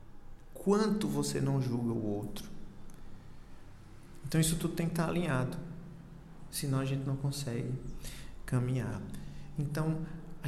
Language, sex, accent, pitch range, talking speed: Portuguese, male, Brazilian, 120-145 Hz, 120 wpm